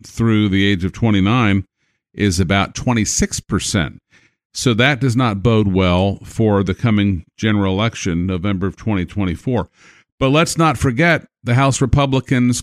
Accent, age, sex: American, 50-69, male